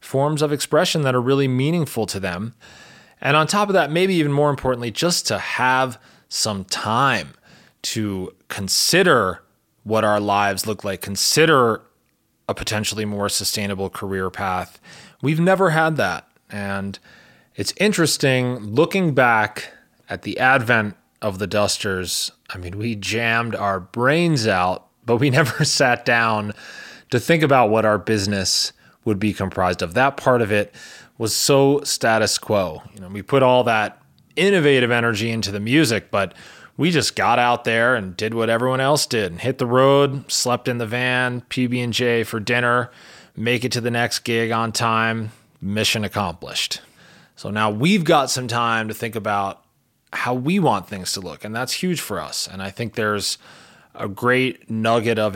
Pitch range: 105-130 Hz